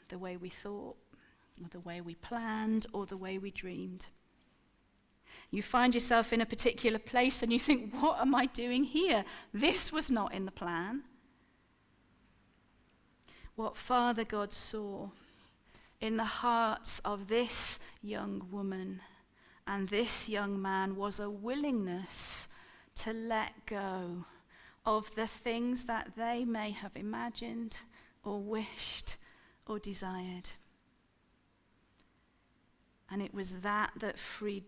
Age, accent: 40-59, British